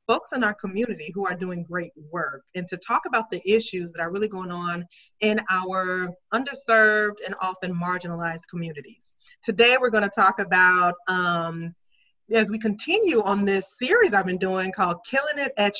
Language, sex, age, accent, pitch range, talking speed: English, female, 30-49, American, 185-235 Hz, 180 wpm